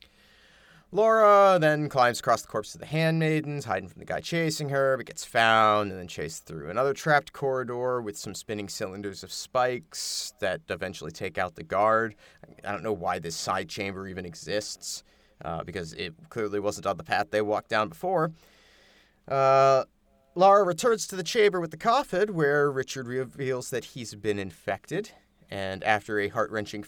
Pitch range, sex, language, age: 105-155 Hz, male, English, 30-49